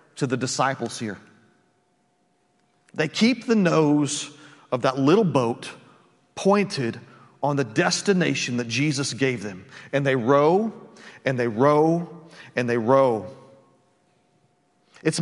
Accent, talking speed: American, 120 wpm